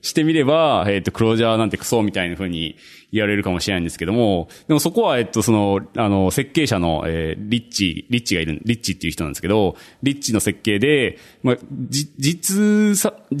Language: Japanese